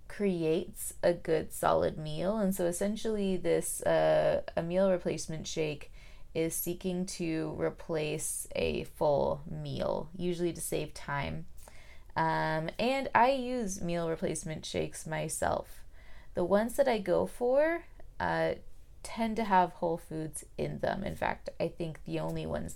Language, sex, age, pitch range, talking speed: English, female, 20-39, 150-185 Hz, 140 wpm